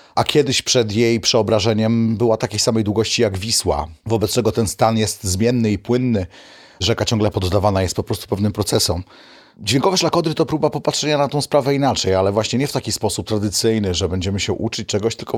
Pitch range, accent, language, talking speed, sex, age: 100-125 Hz, native, Polish, 190 wpm, male, 30-49